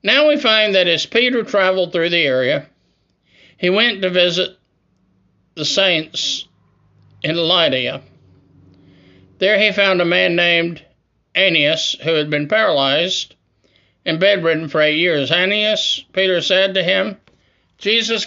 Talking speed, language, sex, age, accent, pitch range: 130 wpm, English, male, 60-79, American, 150-195 Hz